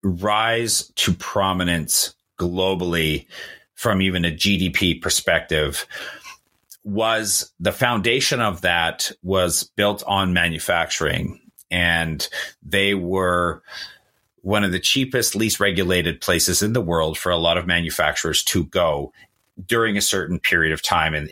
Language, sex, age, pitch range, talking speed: English, male, 40-59, 85-105 Hz, 125 wpm